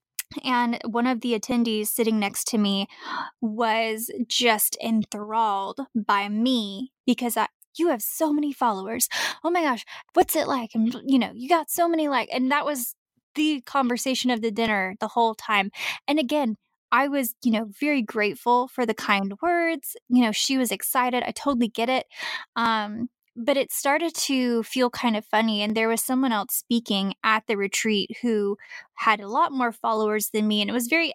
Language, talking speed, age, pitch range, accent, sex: English, 185 wpm, 10-29, 215-265 Hz, American, female